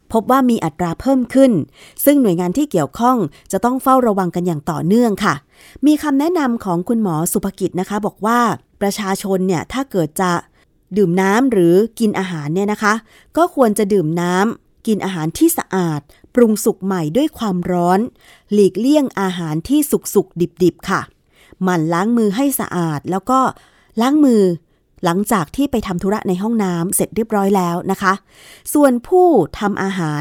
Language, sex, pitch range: Thai, female, 175-225 Hz